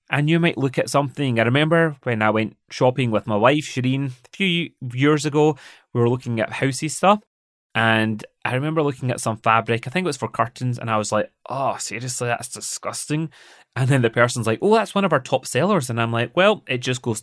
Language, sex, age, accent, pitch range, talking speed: English, male, 20-39, British, 115-165 Hz, 230 wpm